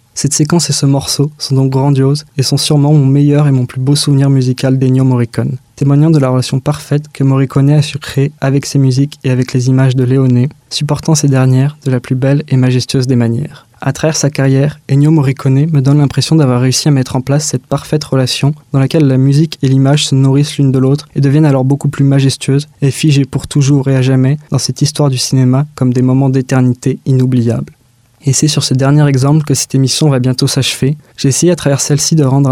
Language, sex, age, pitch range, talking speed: French, male, 20-39, 130-145 Hz, 225 wpm